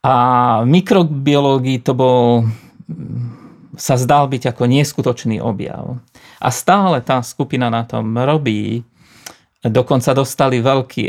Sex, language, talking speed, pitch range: male, Slovak, 115 wpm, 120-145 Hz